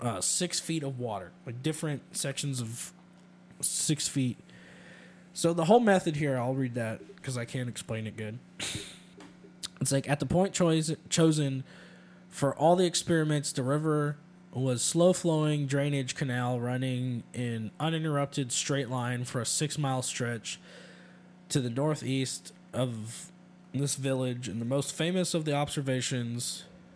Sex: male